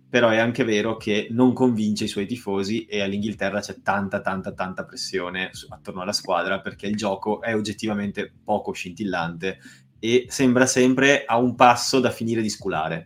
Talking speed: 170 wpm